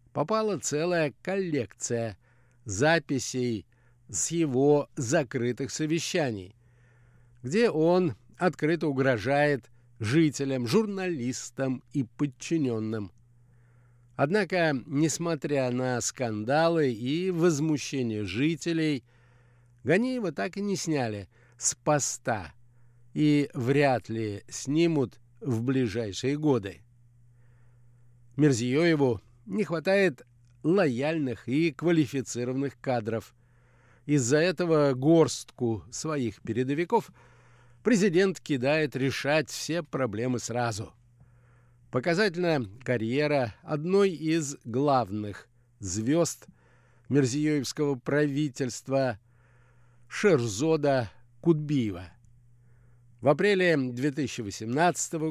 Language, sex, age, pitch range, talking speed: Russian, male, 60-79, 120-155 Hz, 75 wpm